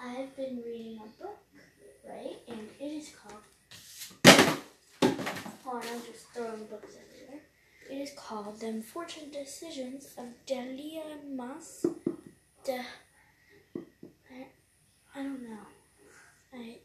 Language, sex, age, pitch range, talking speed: English, female, 20-39, 235-285 Hz, 120 wpm